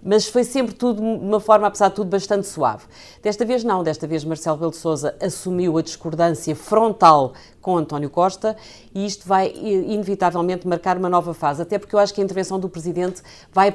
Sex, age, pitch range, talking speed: female, 50-69, 165-200 Hz, 200 wpm